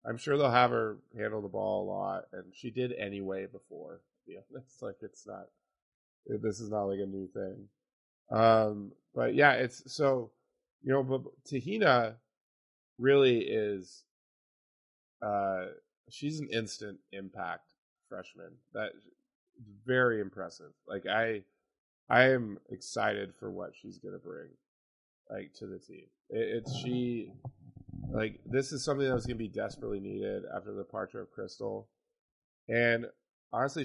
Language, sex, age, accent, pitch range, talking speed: English, male, 20-39, American, 105-135 Hz, 155 wpm